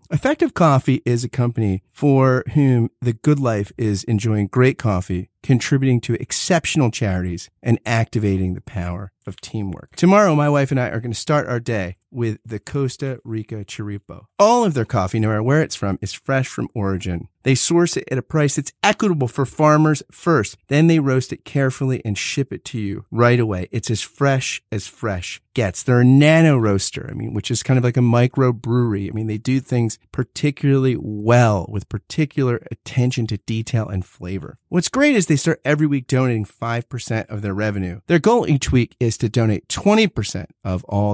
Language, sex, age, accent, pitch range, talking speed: English, male, 30-49, American, 105-150 Hz, 195 wpm